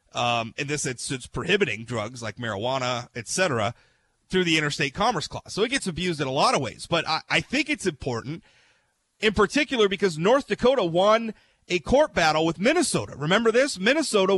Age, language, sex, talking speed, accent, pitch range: 30-49, English, male, 190 wpm, American, 170-225 Hz